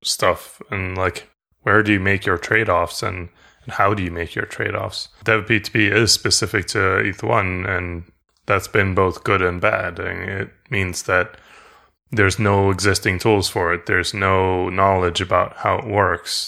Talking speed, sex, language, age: 175 wpm, male, English, 20-39